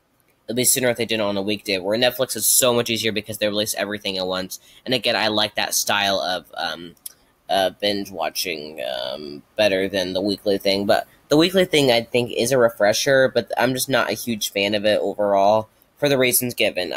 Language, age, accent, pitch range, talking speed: English, 10-29, American, 100-120 Hz, 220 wpm